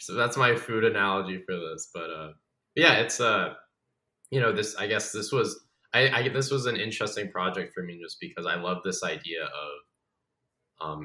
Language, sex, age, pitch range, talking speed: English, male, 20-39, 85-100 Hz, 195 wpm